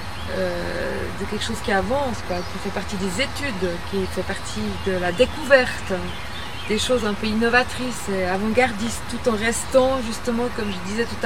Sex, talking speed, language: female, 175 wpm, French